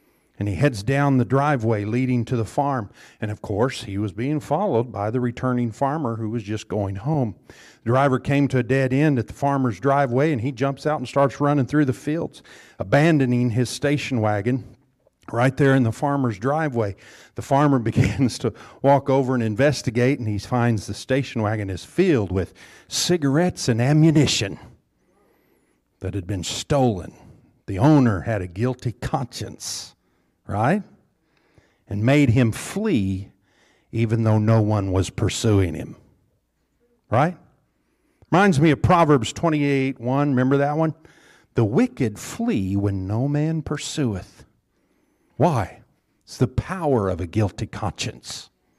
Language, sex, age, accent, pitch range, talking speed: English, male, 50-69, American, 110-140 Hz, 155 wpm